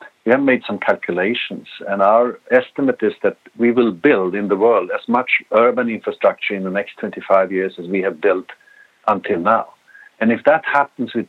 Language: English